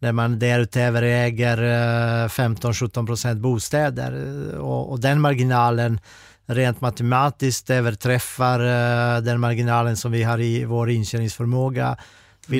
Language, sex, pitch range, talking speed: Swedish, male, 115-130 Hz, 110 wpm